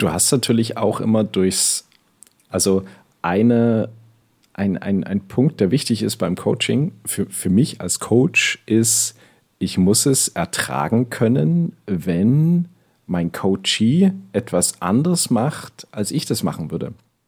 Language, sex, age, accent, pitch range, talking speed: German, male, 40-59, German, 95-115 Hz, 135 wpm